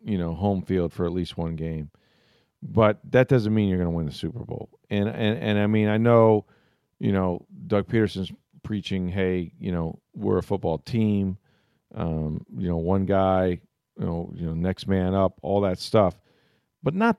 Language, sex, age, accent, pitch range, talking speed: English, male, 40-59, American, 90-110 Hz, 195 wpm